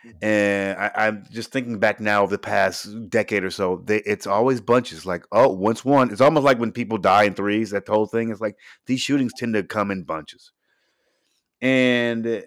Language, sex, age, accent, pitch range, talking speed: English, male, 30-49, American, 100-125 Hz, 200 wpm